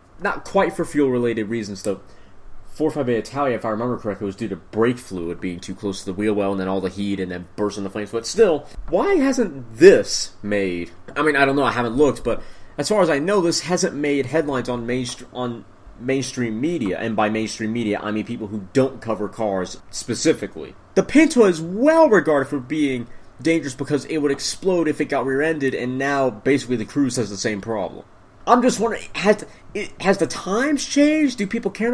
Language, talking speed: English, 205 wpm